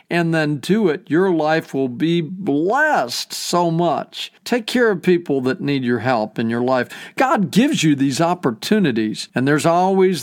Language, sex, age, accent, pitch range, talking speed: English, male, 50-69, American, 140-190 Hz, 175 wpm